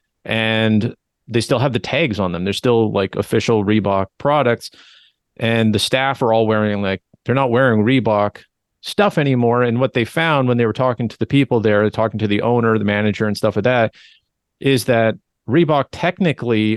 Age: 40-59